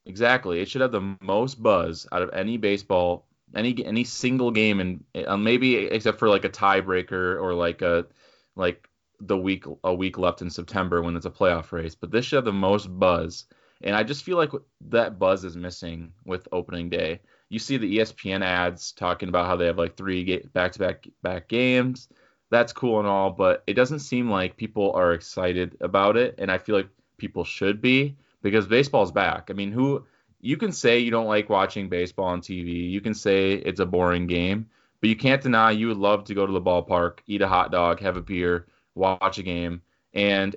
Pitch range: 90-115 Hz